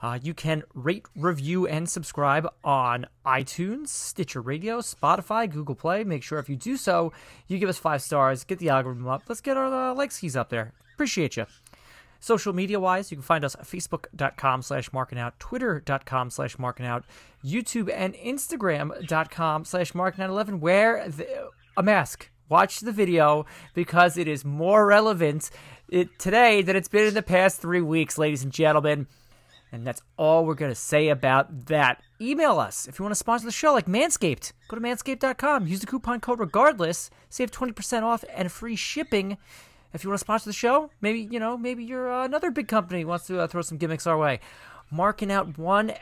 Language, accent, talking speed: English, American, 185 wpm